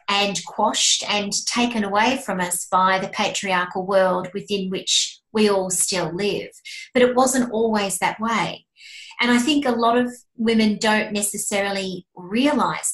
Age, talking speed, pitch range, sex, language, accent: 30-49, 155 wpm, 195-235 Hz, female, English, Australian